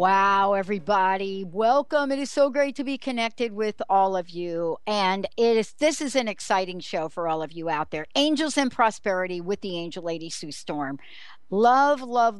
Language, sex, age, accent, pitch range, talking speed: English, female, 60-79, American, 190-255 Hz, 190 wpm